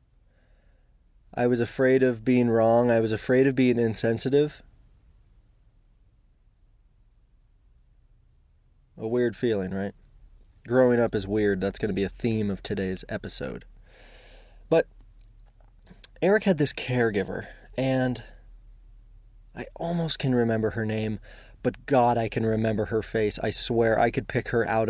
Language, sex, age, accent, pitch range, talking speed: English, male, 20-39, American, 105-130 Hz, 135 wpm